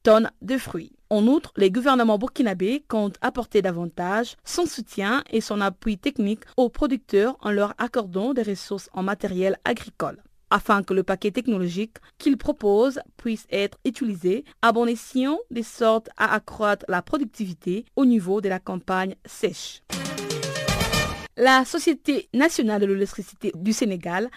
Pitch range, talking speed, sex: 195-255 Hz, 145 wpm, female